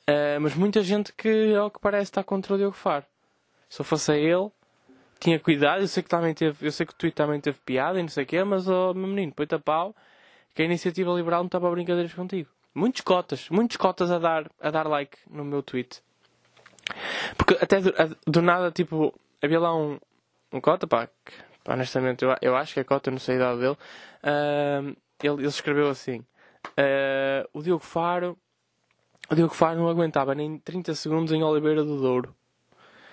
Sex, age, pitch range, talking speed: male, 10-29, 140-175 Hz, 205 wpm